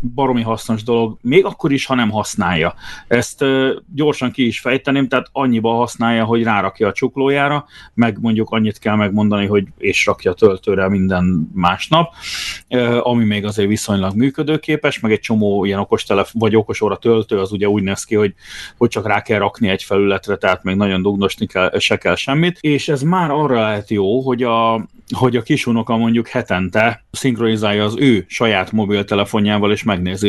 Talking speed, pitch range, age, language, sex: 170 wpm, 100-125 Hz, 30-49, Hungarian, male